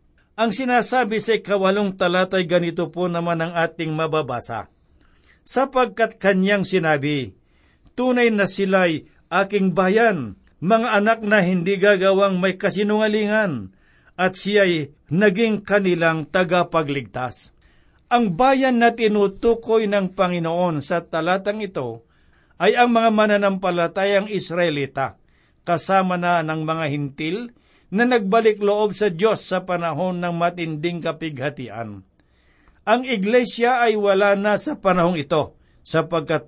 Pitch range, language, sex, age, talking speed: 155-205 Hz, Filipino, male, 60-79, 115 wpm